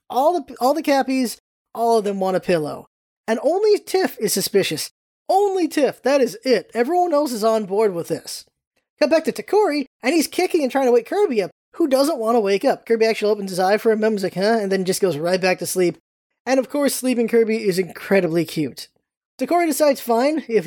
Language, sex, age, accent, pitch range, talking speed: English, male, 20-39, American, 195-280 Hz, 225 wpm